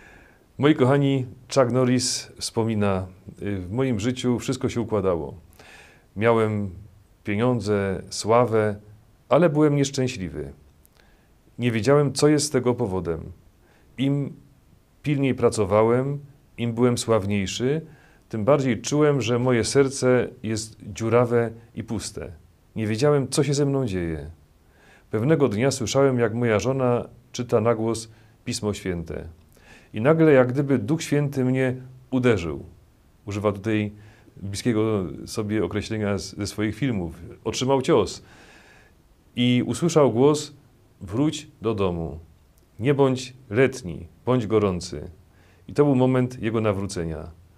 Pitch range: 100-130 Hz